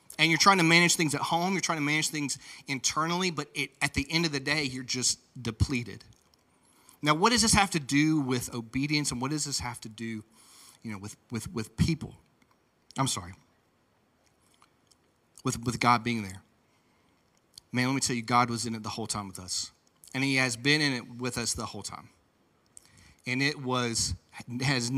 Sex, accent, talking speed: male, American, 200 wpm